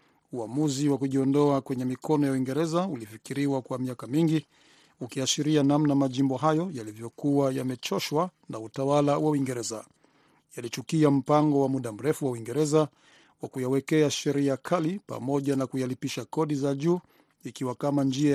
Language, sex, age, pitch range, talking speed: Swahili, male, 50-69, 130-155 Hz, 135 wpm